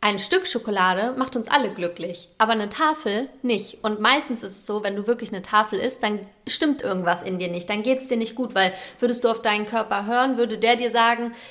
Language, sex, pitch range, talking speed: German, female, 200-240 Hz, 235 wpm